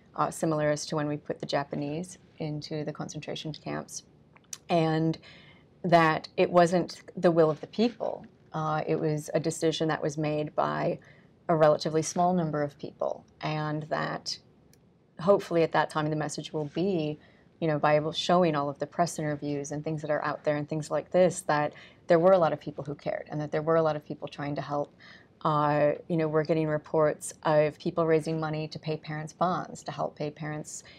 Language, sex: English, female